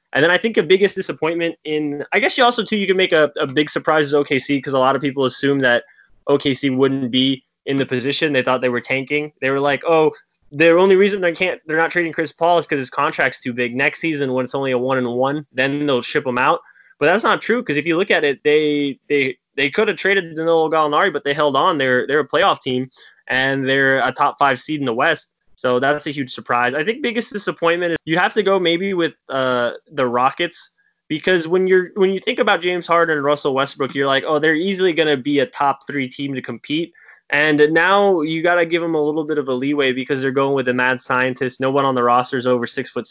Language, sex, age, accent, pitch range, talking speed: English, male, 10-29, American, 135-175 Hz, 255 wpm